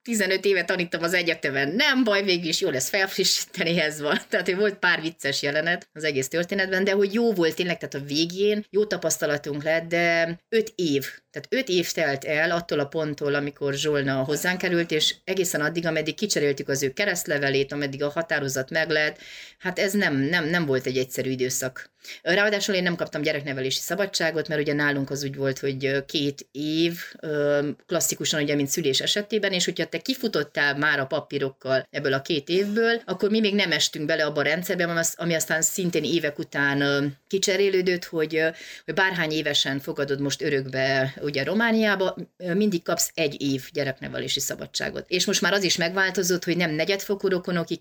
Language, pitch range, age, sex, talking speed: Hungarian, 140-185 Hz, 30-49, female, 175 wpm